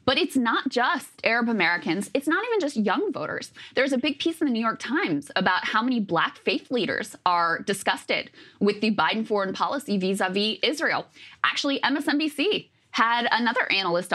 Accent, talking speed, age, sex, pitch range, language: American, 175 wpm, 20-39, female, 190-265 Hz, English